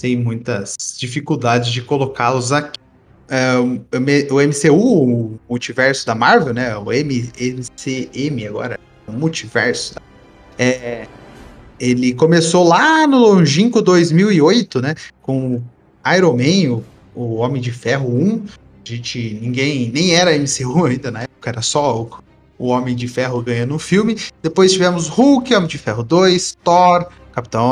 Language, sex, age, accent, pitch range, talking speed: Portuguese, male, 20-39, Brazilian, 125-180 Hz, 150 wpm